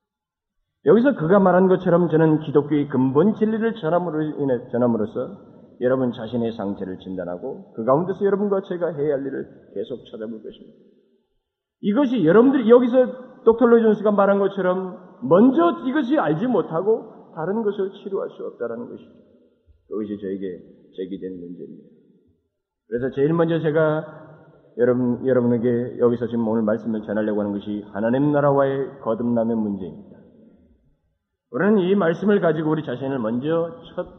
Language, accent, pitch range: Korean, native, 120-185 Hz